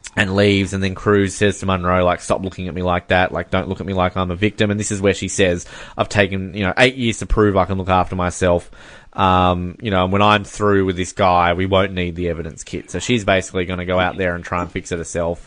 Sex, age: male, 20-39